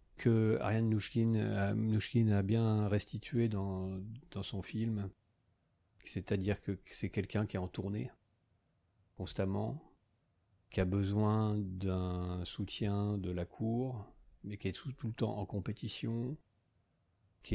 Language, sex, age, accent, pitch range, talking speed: French, male, 40-59, French, 95-110 Hz, 130 wpm